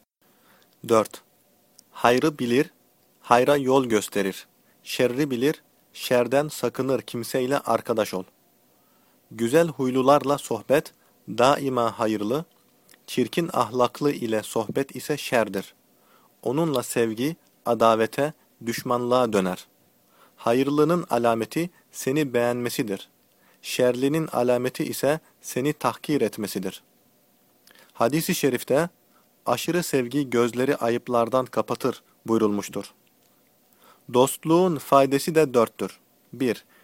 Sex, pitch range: male, 115-145 Hz